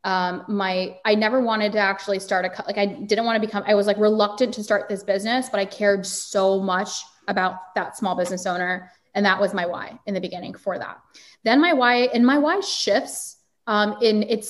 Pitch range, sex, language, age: 190-220 Hz, female, English, 20-39